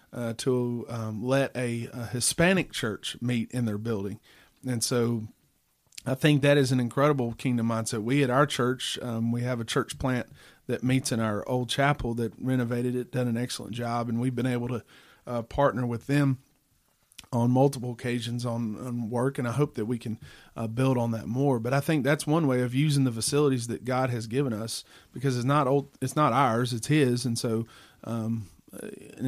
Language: English